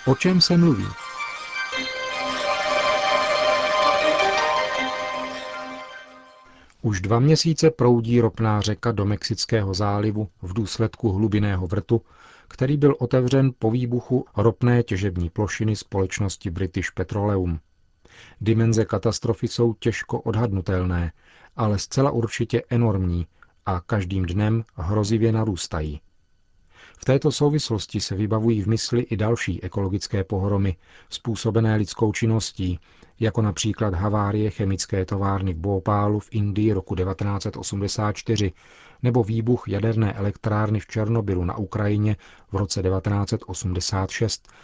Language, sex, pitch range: Czech, male, 95-120 Hz